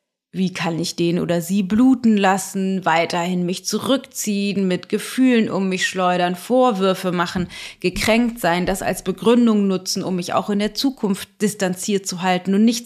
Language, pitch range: German, 175-220 Hz